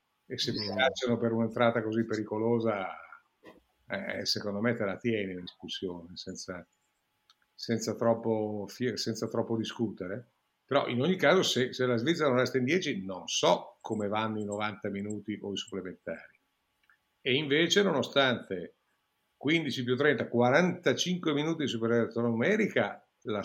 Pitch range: 110-125 Hz